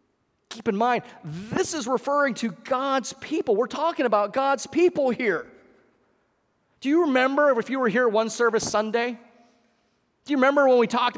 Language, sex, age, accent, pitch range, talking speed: English, male, 30-49, American, 140-235 Hz, 165 wpm